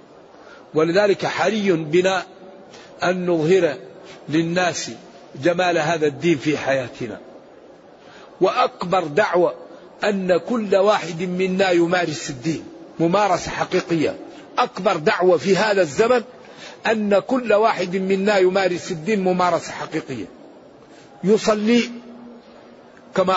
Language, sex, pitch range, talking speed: Arabic, male, 175-220 Hz, 90 wpm